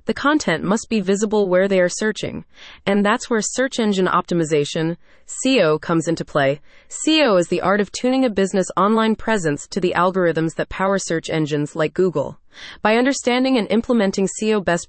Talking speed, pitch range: 175 wpm, 170-235 Hz